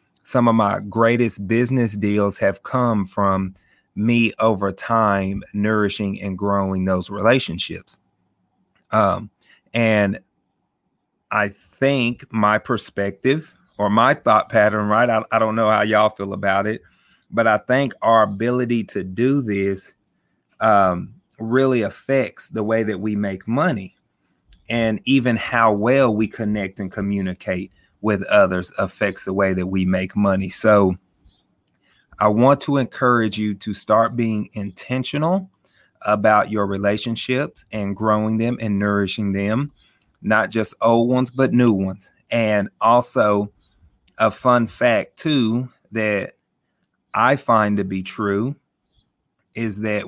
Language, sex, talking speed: English, male, 135 wpm